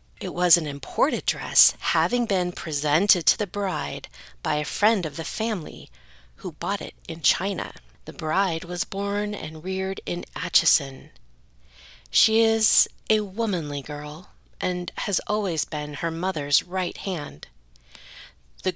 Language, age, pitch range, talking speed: English, 40-59, 155-210 Hz, 140 wpm